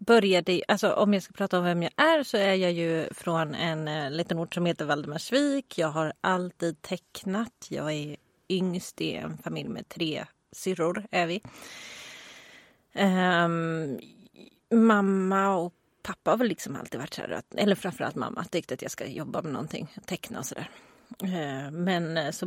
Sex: female